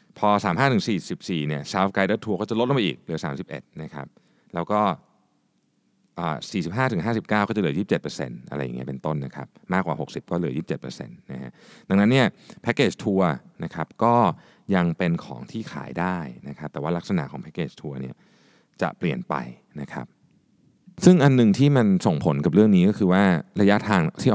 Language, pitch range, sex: Thai, 75-110 Hz, male